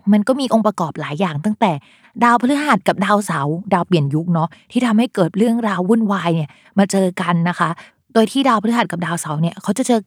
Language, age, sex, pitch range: Thai, 20-39, female, 170-215 Hz